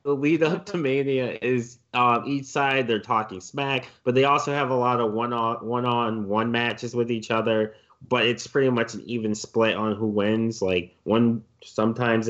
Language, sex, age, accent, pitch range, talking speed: English, male, 20-39, American, 110-135 Hz, 180 wpm